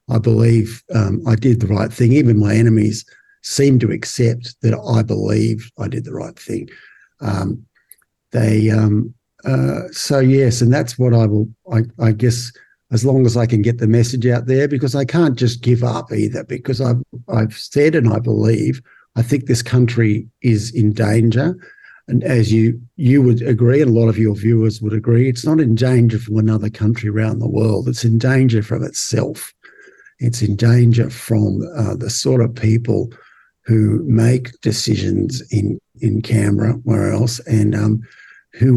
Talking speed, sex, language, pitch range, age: 180 wpm, male, English, 110-125 Hz, 50-69